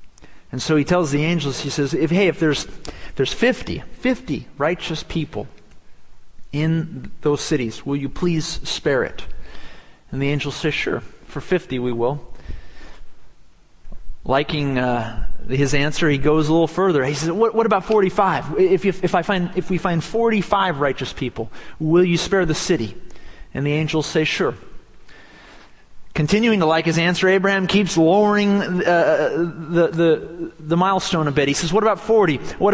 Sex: male